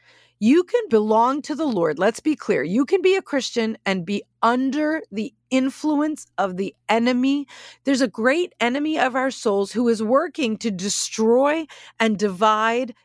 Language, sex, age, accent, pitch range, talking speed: English, female, 40-59, American, 220-300 Hz, 165 wpm